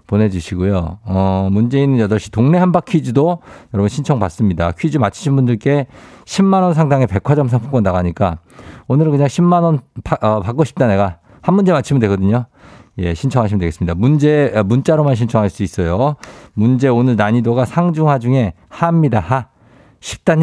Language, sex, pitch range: Korean, male, 105-140 Hz